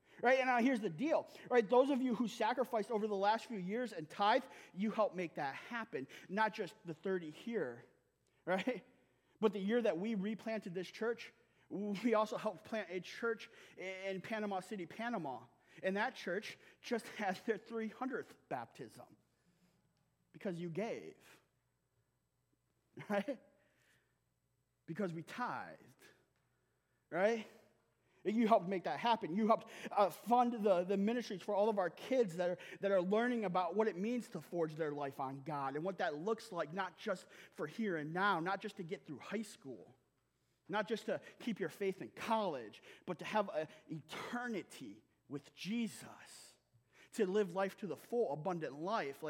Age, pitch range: 30-49, 175-225 Hz